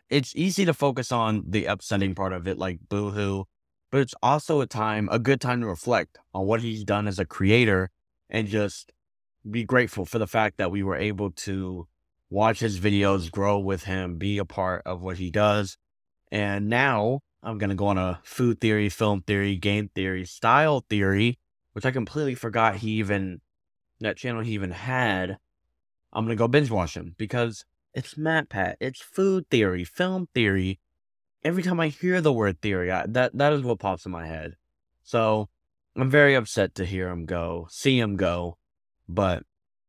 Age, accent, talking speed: 20-39, American, 185 wpm